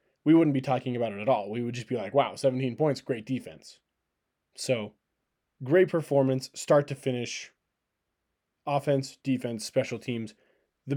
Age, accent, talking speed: 20-39, American, 160 wpm